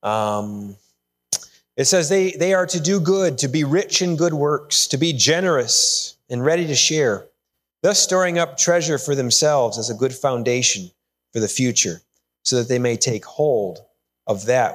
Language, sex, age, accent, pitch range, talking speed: English, male, 30-49, American, 100-160 Hz, 175 wpm